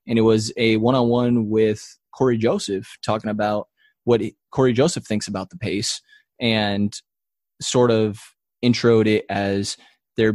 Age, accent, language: 20-39, American, English